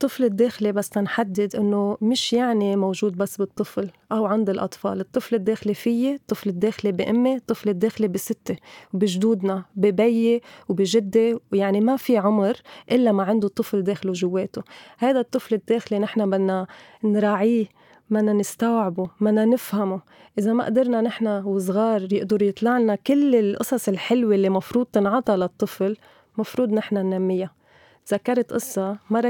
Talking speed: 135 wpm